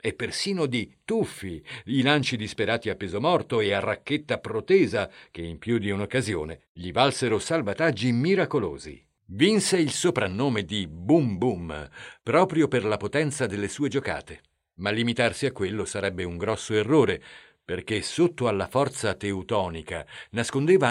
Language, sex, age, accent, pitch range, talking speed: Italian, male, 50-69, native, 100-130 Hz, 145 wpm